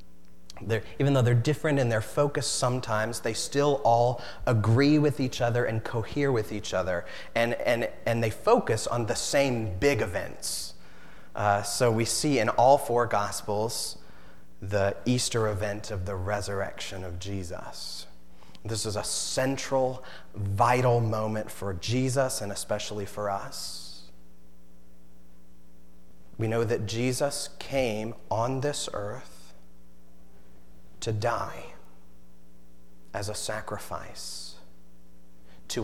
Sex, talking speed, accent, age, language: male, 120 wpm, American, 30-49, English